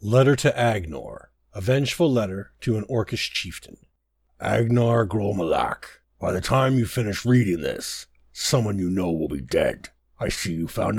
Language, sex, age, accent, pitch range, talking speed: English, male, 60-79, American, 85-125 Hz, 160 wpm